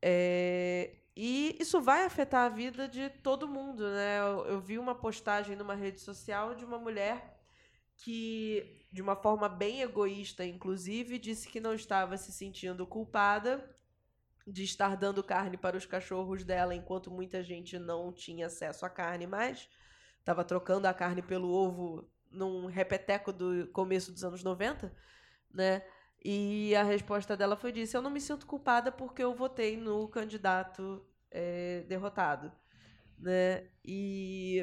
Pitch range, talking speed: 185-250 Hz, 150 wpm